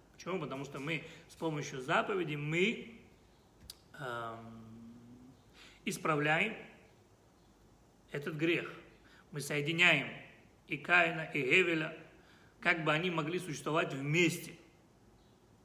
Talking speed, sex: 90 wpm, male